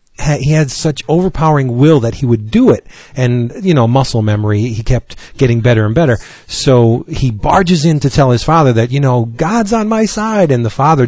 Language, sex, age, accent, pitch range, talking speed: English, male, 40-59, American, 110-140 Hz, 210 wpm